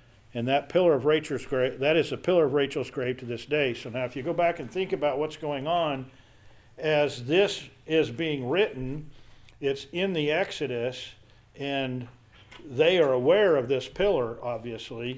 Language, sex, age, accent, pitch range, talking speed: English, male, 50-69, American, 120-155 Hz, 175 wpm